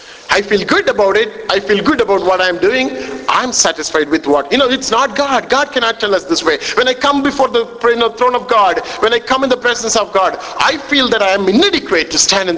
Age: 50-69